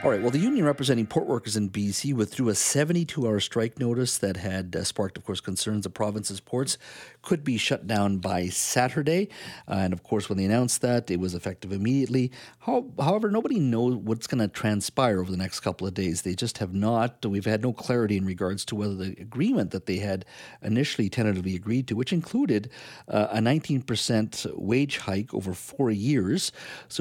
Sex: male